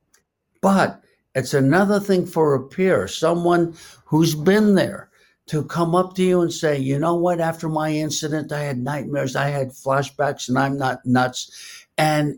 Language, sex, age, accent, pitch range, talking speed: English, male, 60-79, American, 135-175 Hz, 170 wpm